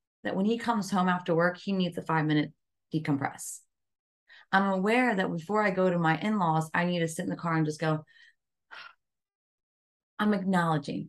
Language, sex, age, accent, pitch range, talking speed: English, female, 30-49, American, 165-225 Hz, 185 wpm